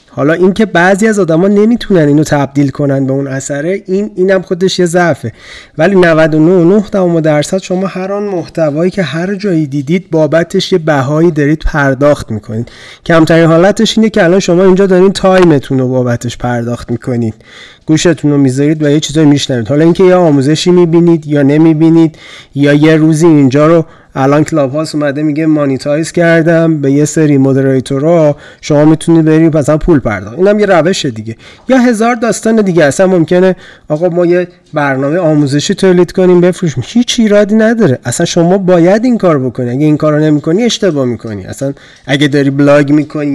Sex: male